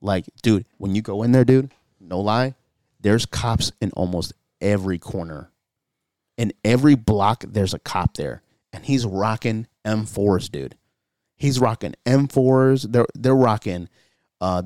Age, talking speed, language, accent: 30-49, 145 wpm, English, American